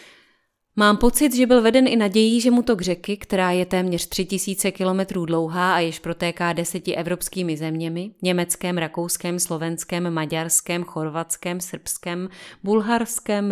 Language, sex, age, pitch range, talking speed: Czech, female, 30-49, 170-195 Hz, 140 wpm